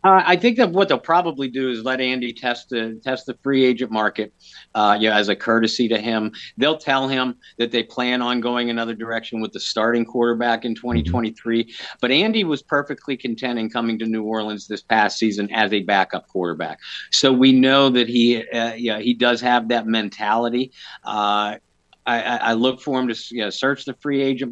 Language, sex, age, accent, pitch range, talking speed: English, male, 50-69, American, 110-130 Hz, 200 wpm